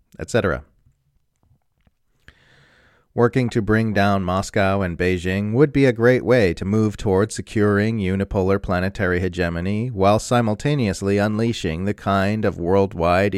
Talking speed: 120 wpm